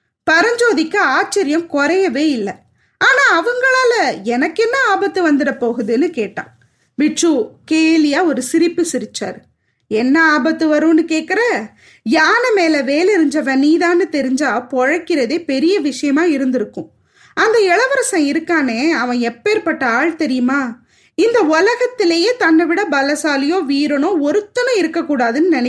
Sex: female